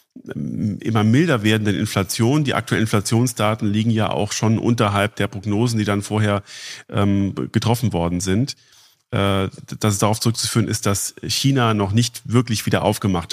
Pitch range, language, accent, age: 100-120 Hz, German, German, 40-59